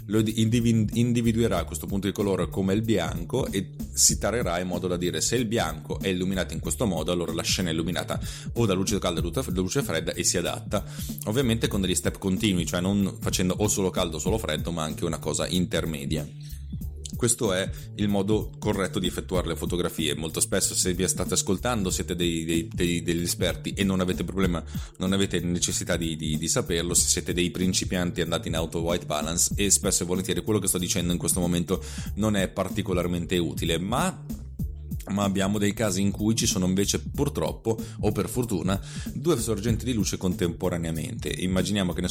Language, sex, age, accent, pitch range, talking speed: Italian, male, 30-49, native, 85-105 Hz, 190 wpm